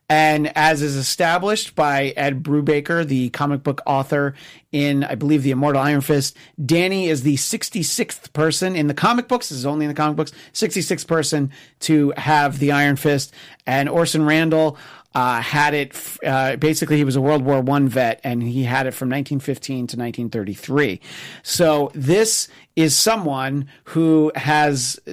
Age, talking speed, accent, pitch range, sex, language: 40-59, 165 wpm, American, 135-160 Hz, male, English